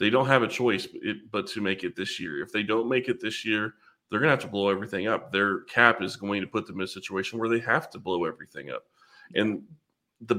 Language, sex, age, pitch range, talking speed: English, male, 30-49, 95-115 Hz, 260 wpm